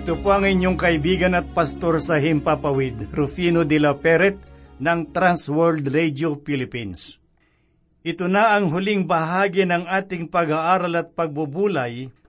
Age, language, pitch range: 50-69, Filipino, 160-195 Hz